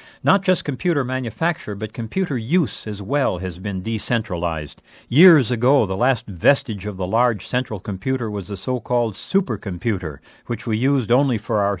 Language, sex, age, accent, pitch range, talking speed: English, male, 60-79, American, 100-140 Hz, 165 wpm